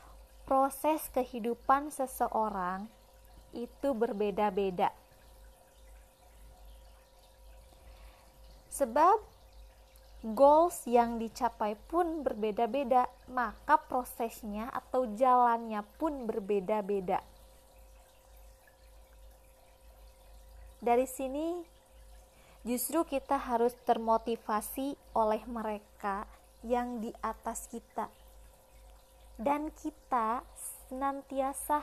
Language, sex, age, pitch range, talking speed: Indonesian, female, 20-39, 220-270 Hz, 60 wpm